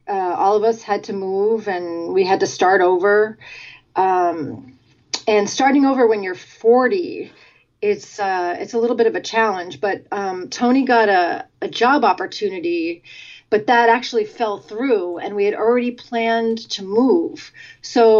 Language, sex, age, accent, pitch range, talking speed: English, female, 30-49, American, 190-265 Hz, 165 wpm